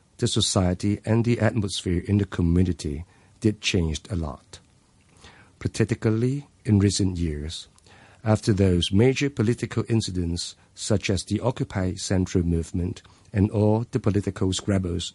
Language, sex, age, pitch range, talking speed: English, male, 50-69, 90-105 Hz, 125 wpm